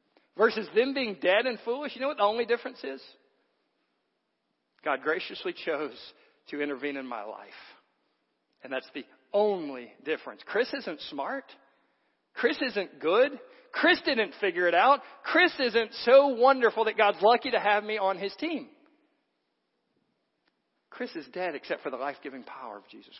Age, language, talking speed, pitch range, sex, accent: 50-69, English, 155 wpm, 200-265 Hz, male, American